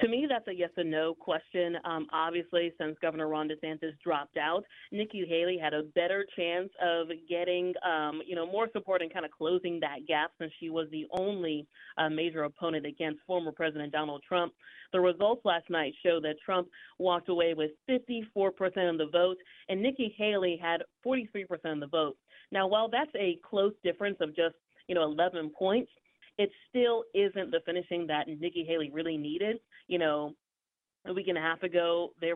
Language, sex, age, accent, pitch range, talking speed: English, female, 30-49, American, 165-195 Hz, 190 wpm